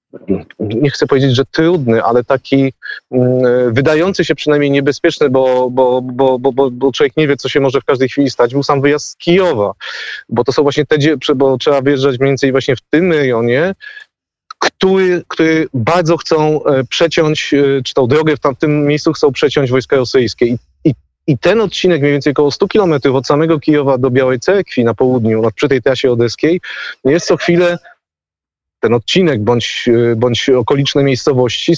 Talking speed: 170 wpm